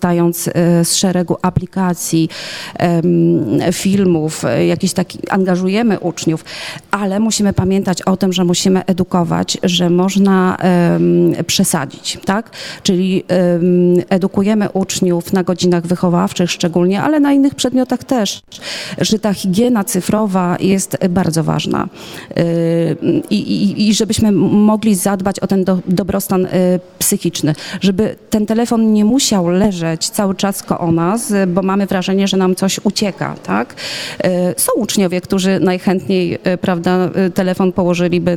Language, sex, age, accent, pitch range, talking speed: Polish, female, 40-59, native, 175-200 Hz, 120 wpm